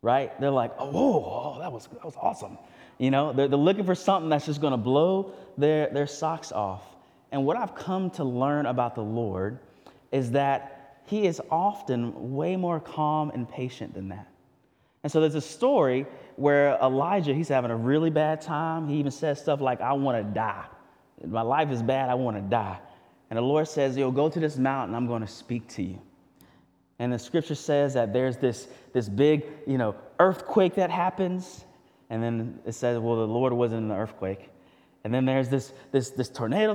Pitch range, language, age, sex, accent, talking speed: 115-155 Hz, English, 20-39, male, American, 205 wpm